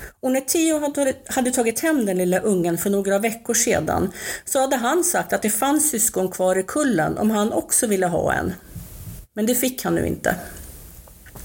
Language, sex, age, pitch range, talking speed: Swedish, female, 40-59, 185-260 Hz, 185 wpm